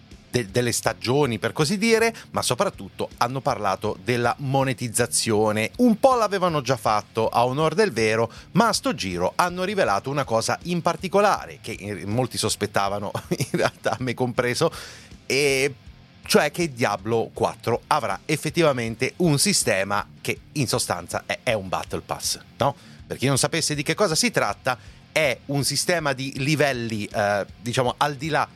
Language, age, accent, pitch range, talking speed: Italian, 30-49, native, 105-145 Hz, 155 wpm